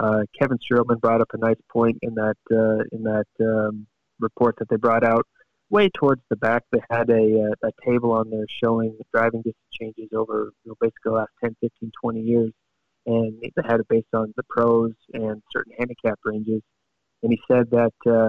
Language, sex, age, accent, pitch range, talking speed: English, male, 20-39, American, 110-120 Hz, 200 wpm